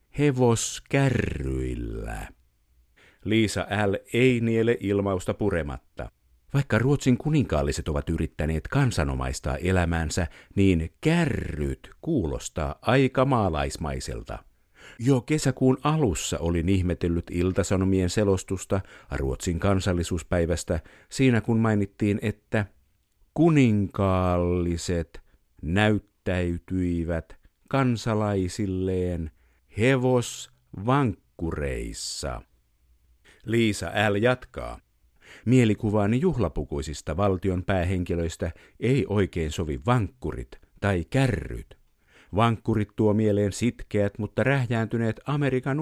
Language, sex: Finnish, male